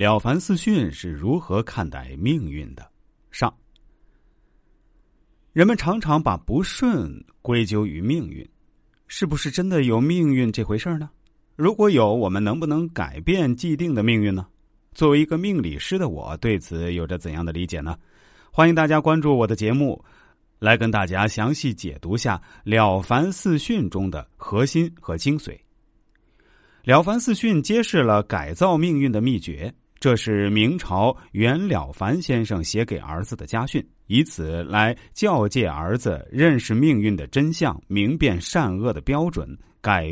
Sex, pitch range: male, 95-155 Hz